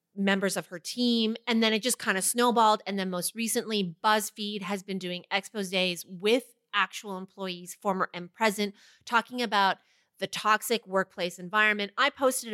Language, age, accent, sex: English, 30-49, American, female